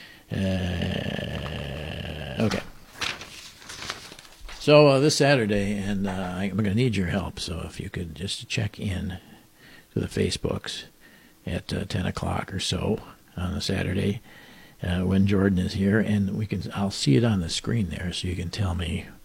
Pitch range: 95-115 Hz